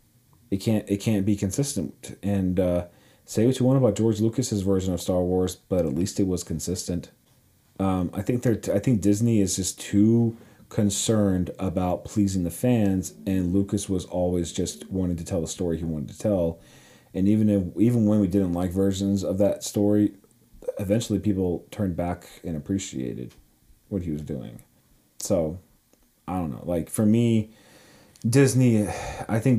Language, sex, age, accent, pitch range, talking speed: English, male, 40-59, American, 90-105 Hz, 175 wpm